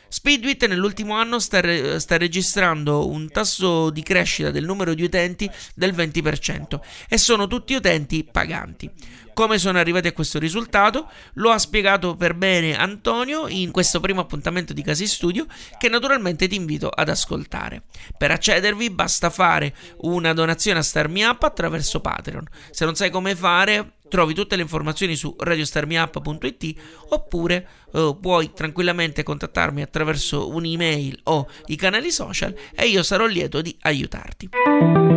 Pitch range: 160-200 Hz